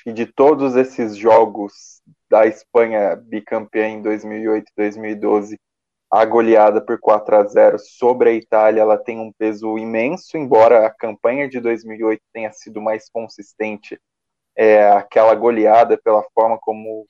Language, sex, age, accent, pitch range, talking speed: Portuguese, male, 20-39, Brazilian, 110-125 Hz, 135 wpm